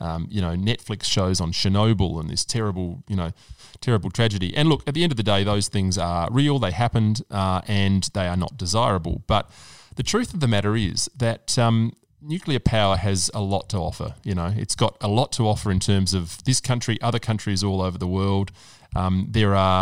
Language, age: English, 30-49